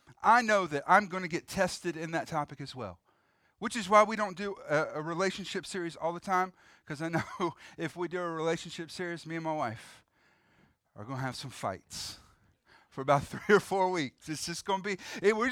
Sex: male